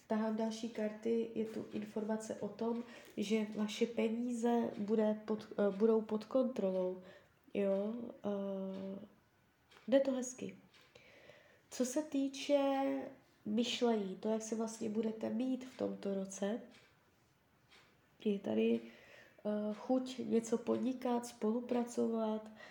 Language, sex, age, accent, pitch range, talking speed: Czech, female, 20-39, native, 215-245 Hz, 110 wpm